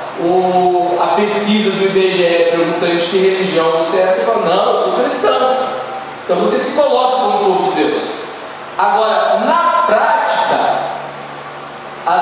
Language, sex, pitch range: Portuguese, male, 170-235 Hz